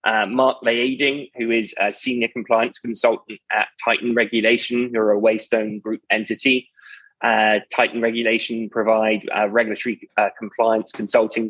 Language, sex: English, male